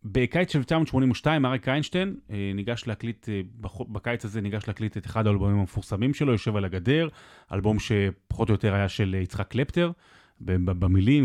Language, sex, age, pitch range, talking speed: Hebrew, male, 30-49, 110-150 Hz, 155 wpm